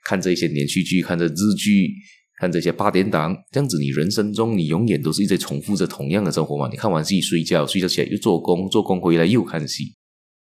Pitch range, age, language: 75-105 Hz, 20-39, Chinese